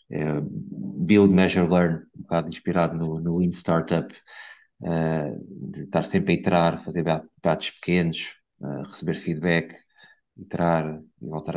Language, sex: Portuguese, male